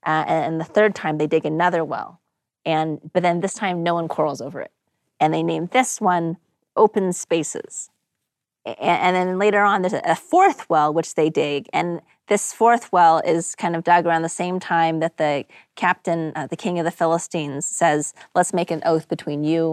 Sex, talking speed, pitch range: female, 205 wpm, 155-185 Hz